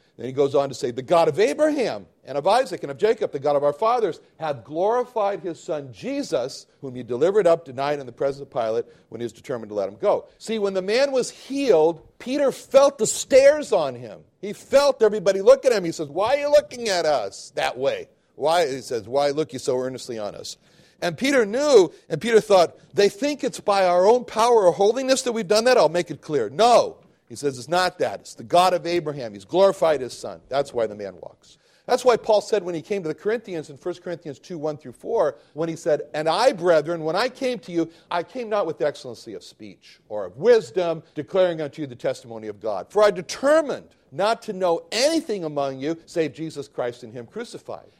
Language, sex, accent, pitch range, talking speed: English, male, American, 155-250 Hz, 230 wpm